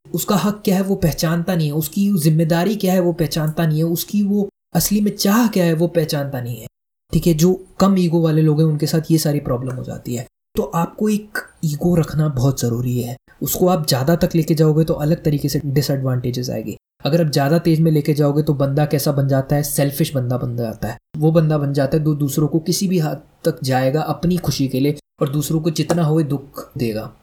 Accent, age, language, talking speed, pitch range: native, 20-39, Hindi, 230 wpm, 140-170 Hz